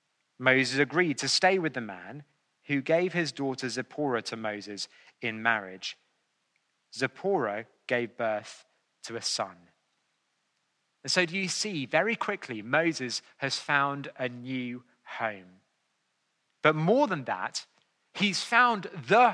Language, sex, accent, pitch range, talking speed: English, male, British, 135-185 Hz, 130 wpm